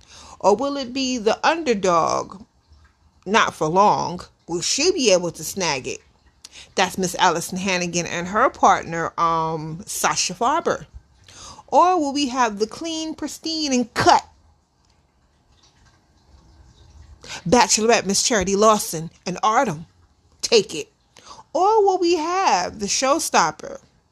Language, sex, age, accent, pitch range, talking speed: English, female, 30-49, American, 180-245 Hz, 120 wpm